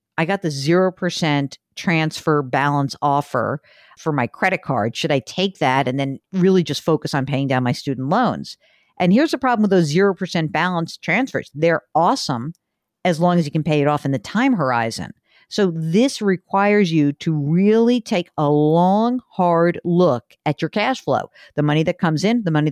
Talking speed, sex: 190 wpm, female